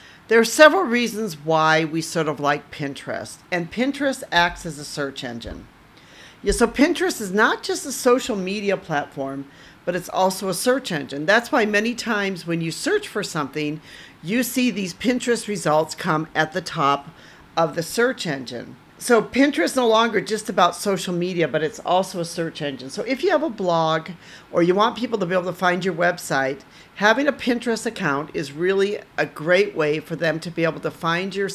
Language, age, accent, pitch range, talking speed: English, 50-69, American, 155-215 Hz, 195 wpm